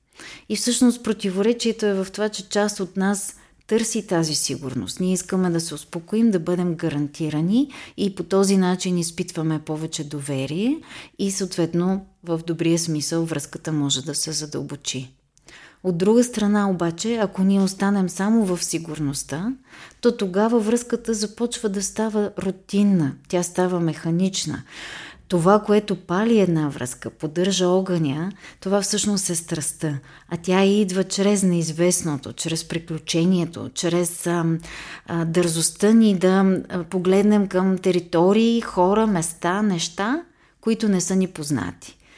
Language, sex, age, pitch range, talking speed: Bulgarian, female, 30-49, 165-205 Hz, 135 wpm